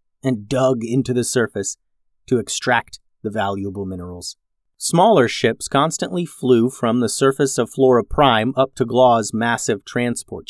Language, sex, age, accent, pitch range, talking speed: English, male, 30-49, American, 105-135 Hz, 145 wpm